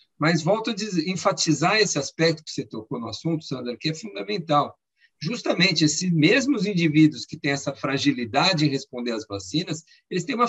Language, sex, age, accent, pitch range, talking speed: Portuguese, male, 50-69, Brazilian, 135-170 Hz, 170 wpm